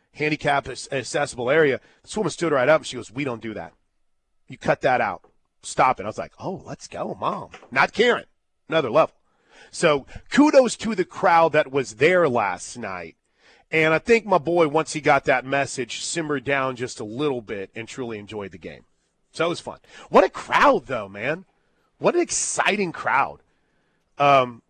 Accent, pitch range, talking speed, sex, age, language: American, 125-165 Hz, 185 wpm, male, 40-59, English